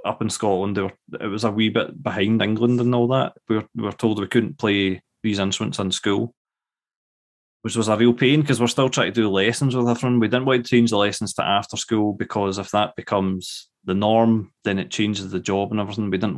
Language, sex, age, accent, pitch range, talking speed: English, male, 20-39, British, 95-115 Hz, 230 wpm